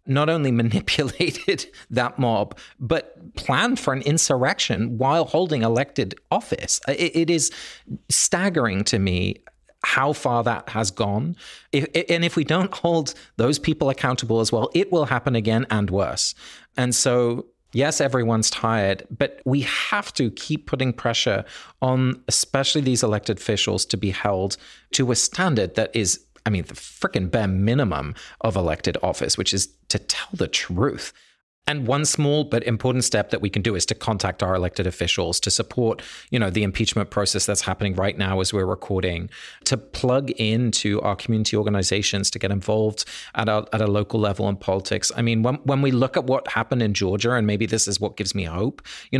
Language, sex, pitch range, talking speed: English, male, 105-140 Hz, 180 wpm